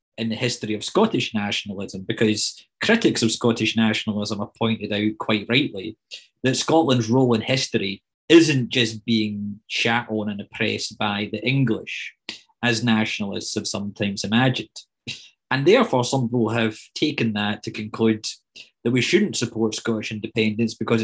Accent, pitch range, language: British, 105-120 Hz, English